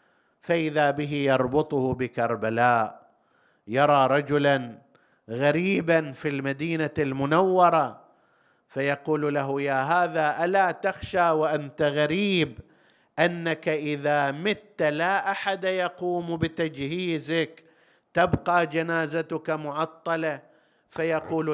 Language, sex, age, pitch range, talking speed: Arabic, male, 50-69, 135-180 Hz, 80 wpm